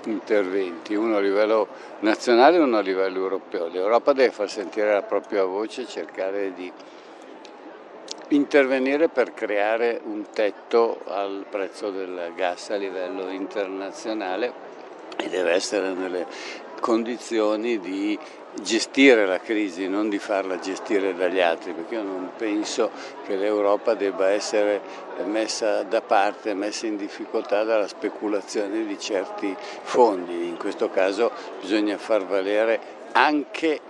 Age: 60-79